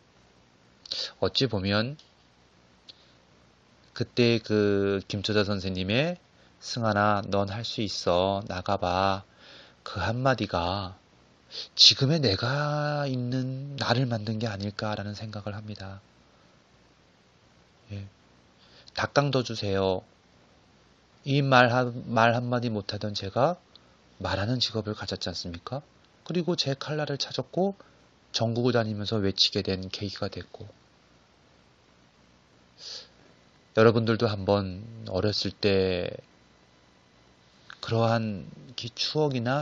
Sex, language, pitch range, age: male, Korean, 95-130 Hz, 30-49